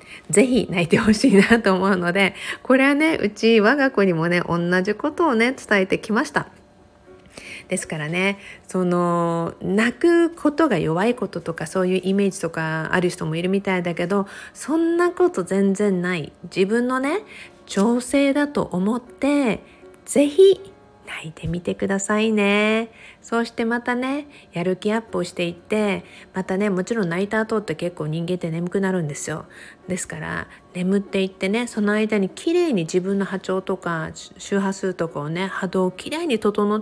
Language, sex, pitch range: Japanese, female, 180-230 Hz